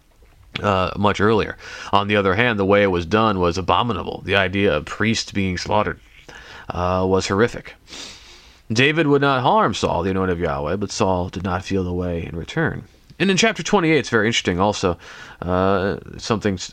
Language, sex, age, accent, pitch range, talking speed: English, male, 30-49, American, 95-130 Hz, 185 wpm